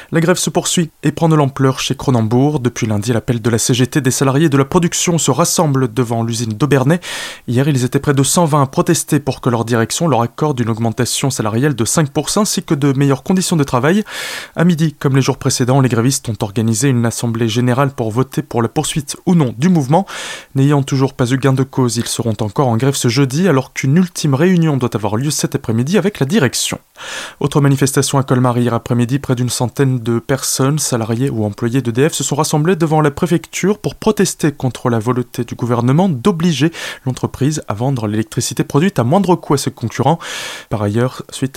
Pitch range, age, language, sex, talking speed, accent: 125-155 Hz, 20-39, French, male, 205 wpm, French